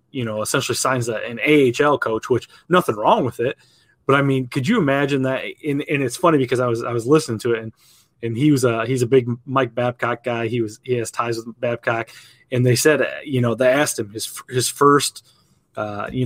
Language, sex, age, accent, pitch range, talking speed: English, male, 20-39, American, 120-145 Hz, 230 wpm